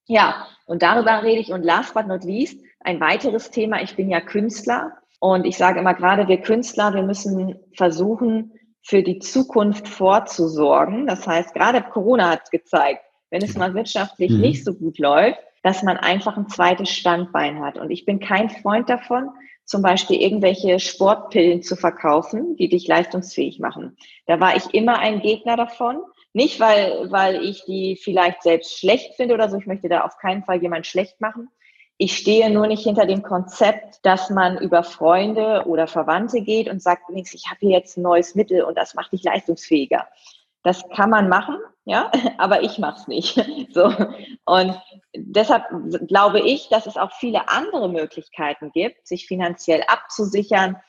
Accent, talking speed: German, 175 wpm